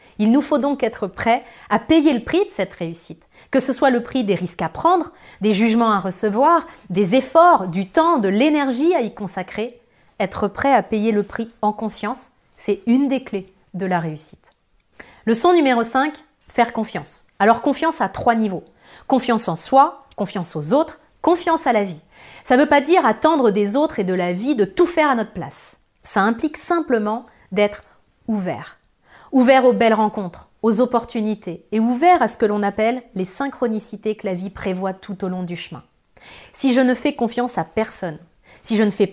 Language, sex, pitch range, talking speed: French, female, 195-265 Hz, 195 wpm